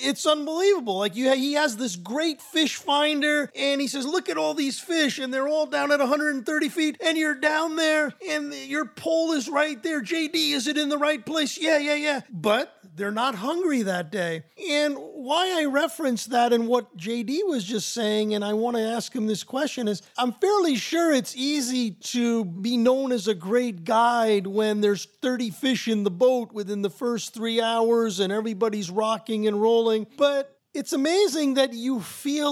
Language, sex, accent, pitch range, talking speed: English, male, American, 230-295 Hz, 195 wpm